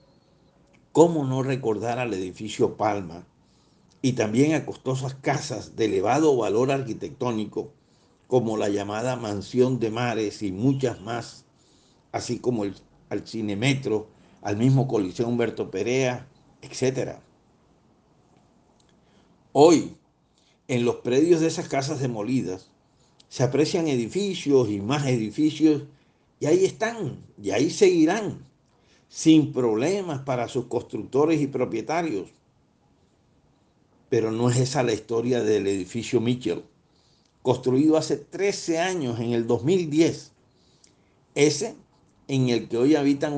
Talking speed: 115 wpm